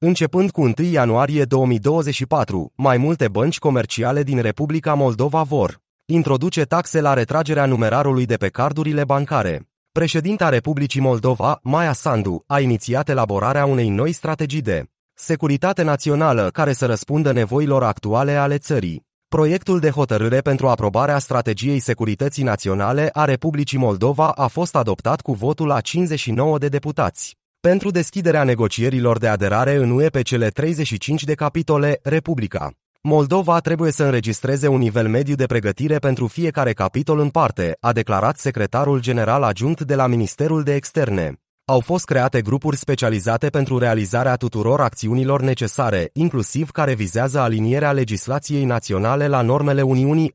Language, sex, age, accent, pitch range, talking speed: Romanian, male, 30-49, native, 120-150 Hz, 140 wpm